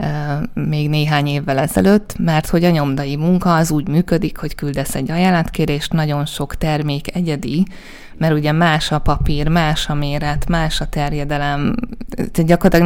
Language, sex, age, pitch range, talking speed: Hungarian, female, 20-39, 145-180 Hz, 155 wpm